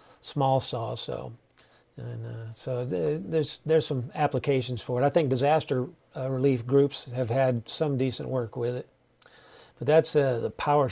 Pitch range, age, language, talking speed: 130-160 Hz, 50-69, English, 170 wpm